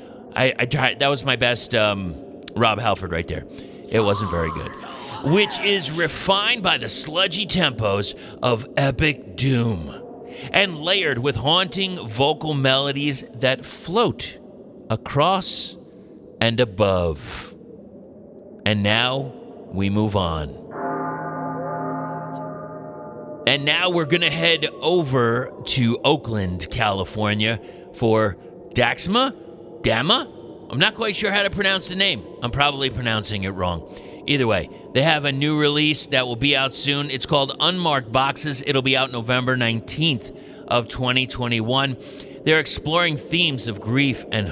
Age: 30-49